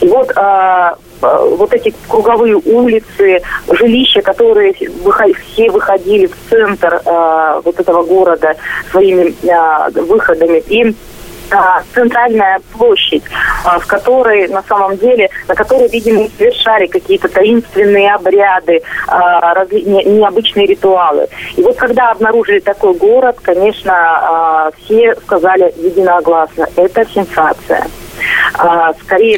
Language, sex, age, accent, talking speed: Russian, female, 20-39, native, 95 wpm